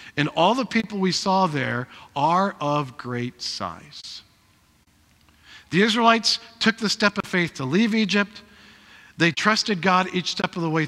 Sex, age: male, 50-69